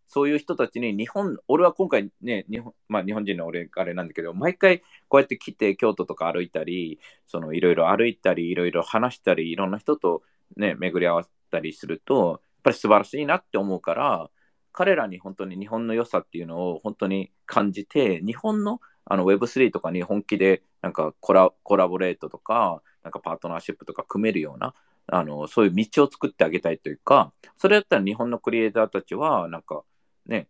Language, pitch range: Japanese, 90-125 Hz